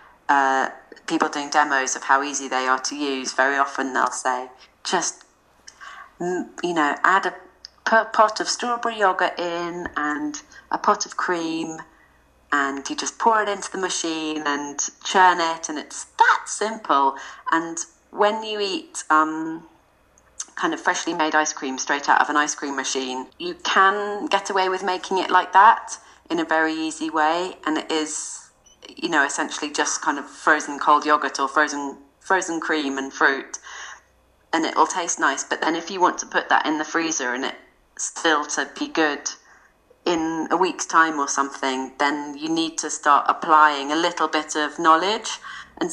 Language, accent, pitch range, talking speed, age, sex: English, British, 145-180 Hz, 175 wpm, 40-59, female